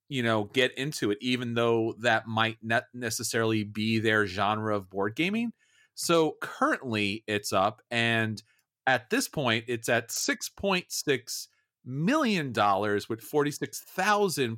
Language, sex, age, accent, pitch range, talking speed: English, male, 40-59, American, 110-150 Hz, 130 wpm